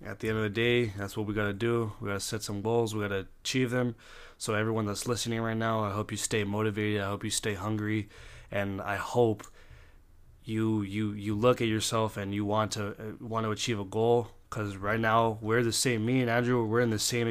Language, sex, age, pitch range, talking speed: English, male, 20-39, 105-115 Hz, 245 wpm